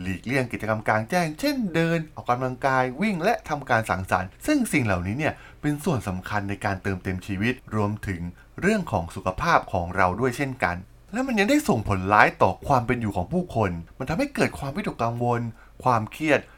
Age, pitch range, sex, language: 20-39, 100-150 Hz, male, Thai